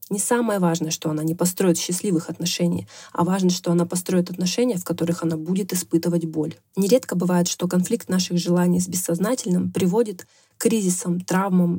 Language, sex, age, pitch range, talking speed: Russian, female, 20-39, 170-200 Hz, 170 wpm